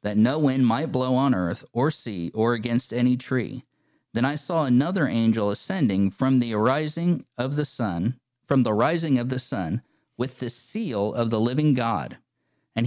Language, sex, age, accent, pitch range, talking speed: English, male, 40-59, American, 115-150 Hz, 180 wpm